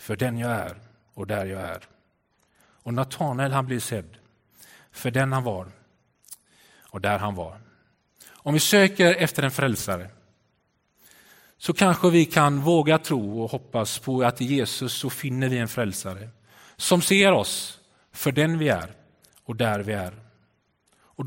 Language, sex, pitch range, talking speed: Swedish, male, 115-155 Hz, 155 wpm